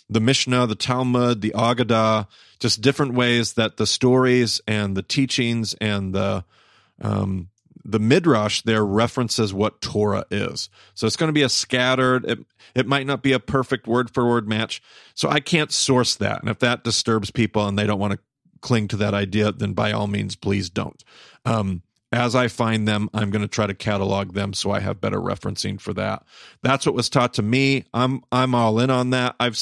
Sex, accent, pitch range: male, American, 105-125 Hz